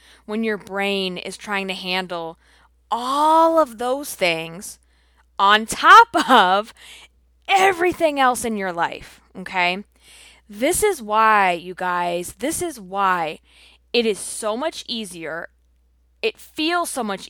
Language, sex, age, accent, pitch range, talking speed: English, female, 20-39, American, 175-230 Hz, 130 wpm